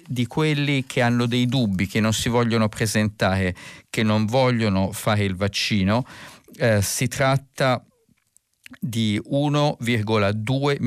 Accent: native